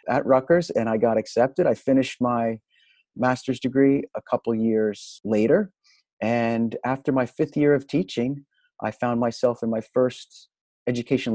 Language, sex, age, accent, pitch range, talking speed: English, male, 40-59, American, 105-135 Hz, 155 wpm